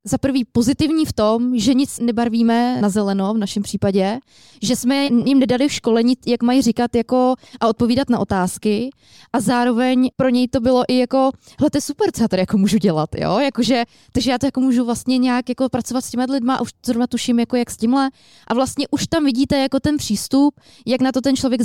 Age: 20-39